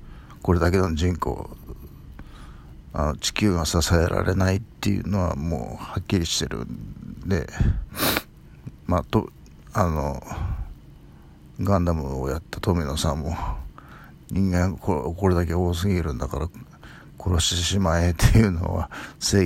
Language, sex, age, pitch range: Japanese, male, 50-69, 75-100 Hz